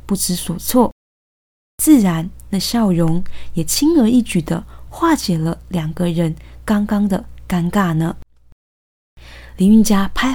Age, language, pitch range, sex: 20-39, Chinese, 165-220 Hz, female